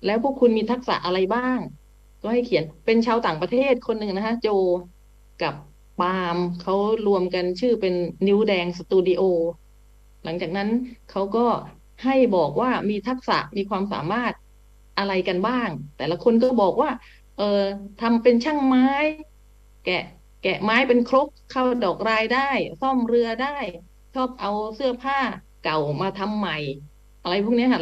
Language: English